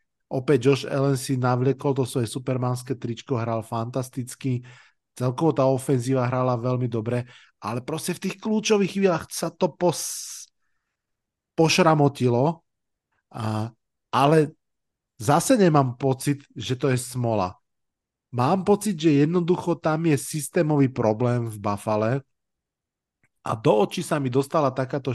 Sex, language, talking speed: male, Slovak, 125 wpm